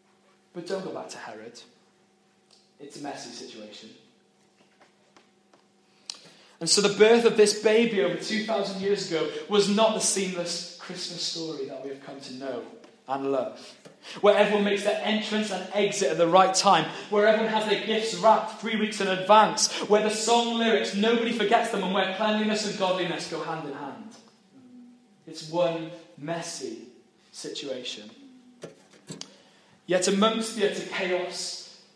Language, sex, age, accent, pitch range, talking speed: English, male, 20-39, British, 170-215 Hz, 150 wpm